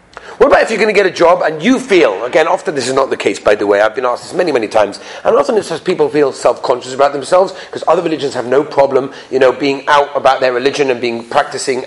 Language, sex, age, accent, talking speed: English, male, 30-49, British, 280 wpm